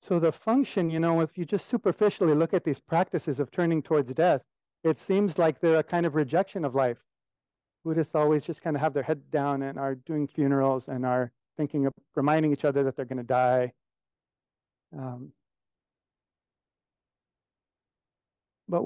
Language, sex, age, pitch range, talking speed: English, male, 50-69, 140-190 Hz, 170 wpm